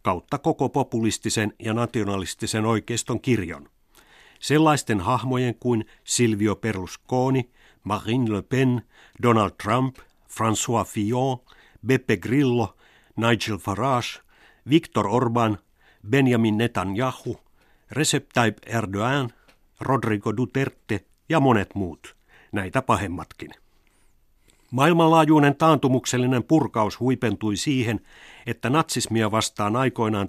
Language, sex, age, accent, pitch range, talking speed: Finnish, male, 60-79, native, 105-130 Hz, 90 wpm